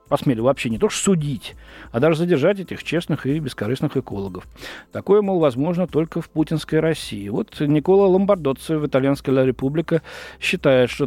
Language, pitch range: Russian, 125-170 Hz